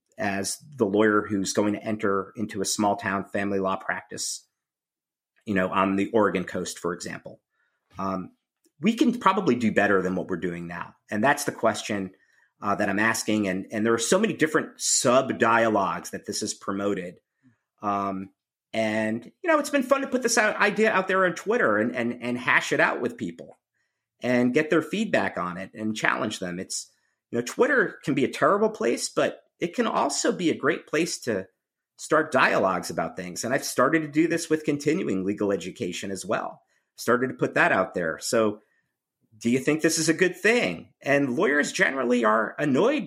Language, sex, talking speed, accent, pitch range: English, male, 195 wpm, American, 100-160 Hz